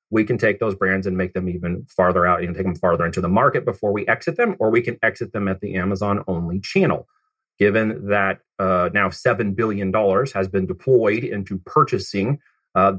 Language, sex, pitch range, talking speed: English, male, 95-110 Hz, 200 wpm